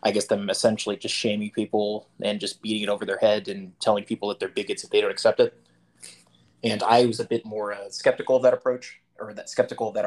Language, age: English, 20-39